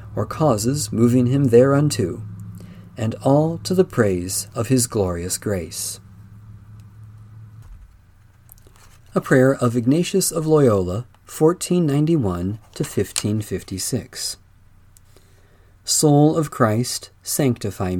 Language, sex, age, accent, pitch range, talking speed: English, male, 40-59, American, 95-140 Hz, 90 wpm